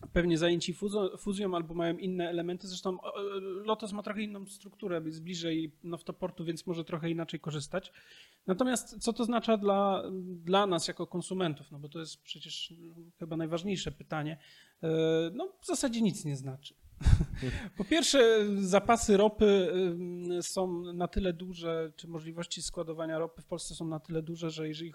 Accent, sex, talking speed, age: native, male, 155 wpm, 30-49